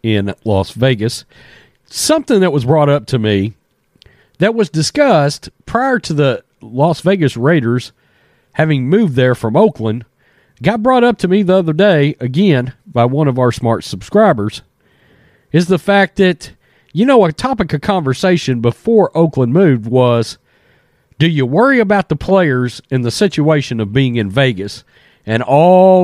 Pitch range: 120-160 Hz